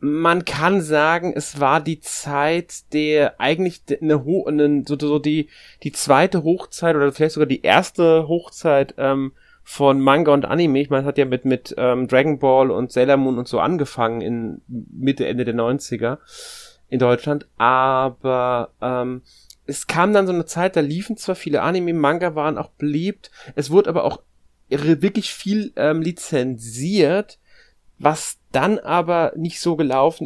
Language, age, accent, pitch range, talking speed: German, 30-49, German, 125-155 Hz, 165 wpm